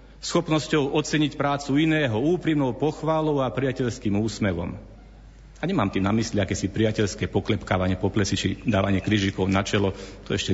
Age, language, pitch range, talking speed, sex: 40-59, Slovak, 100-130 Hz, 150 wpm, male